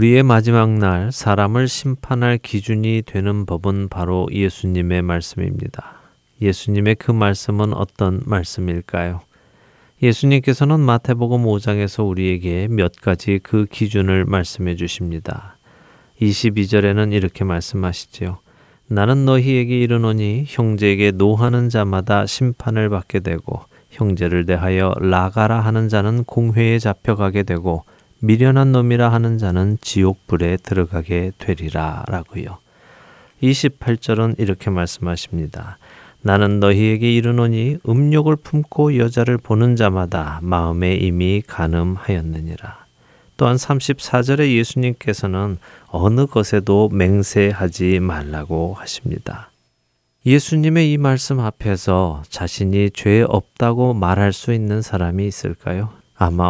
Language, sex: Korean, male